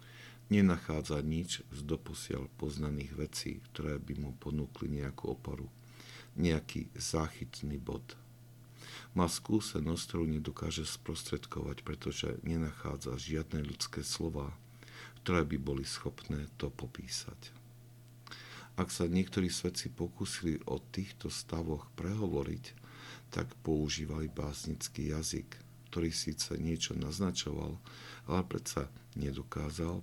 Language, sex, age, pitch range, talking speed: Slovak, male, 50-69, 75-110 Hz, 100 wpm